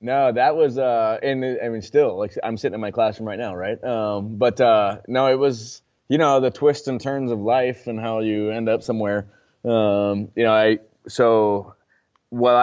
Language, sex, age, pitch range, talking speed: English, male, 20-39, 105-125 Hz, 205 wpm